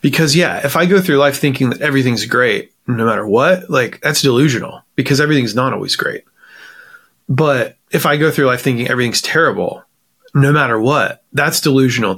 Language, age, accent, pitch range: English, 30-49, American, 115-150 Hz